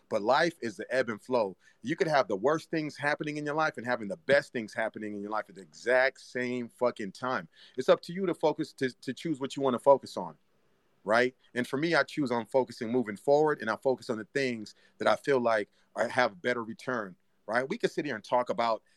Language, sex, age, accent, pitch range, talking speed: English, male, 40-59, American, 115-145 Hz, 250 wpm